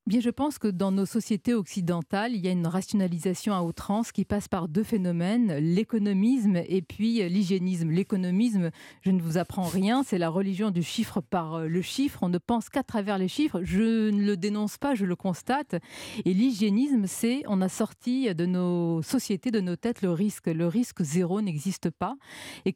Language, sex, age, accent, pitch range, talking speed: French, female, 40-59, French, 180-225 Hz, 190 wpm